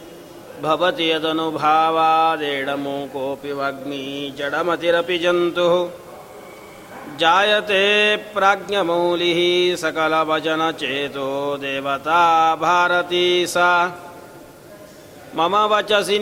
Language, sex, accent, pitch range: Kannada, male, native, 165-180 Hz